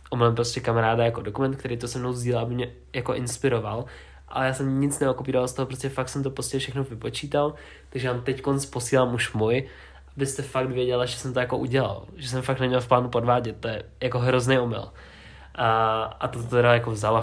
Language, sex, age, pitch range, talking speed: Czech, male, 20-39, 110-125 Hz, 205 wpm